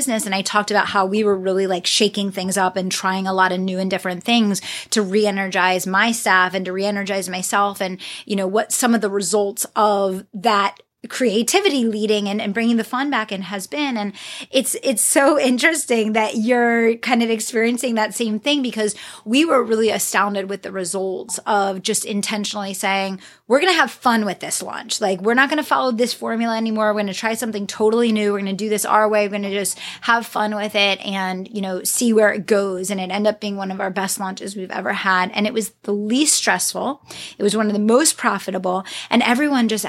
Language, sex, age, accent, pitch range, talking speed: English, female, 30-49, American, 195-240 Hz, 220 wpm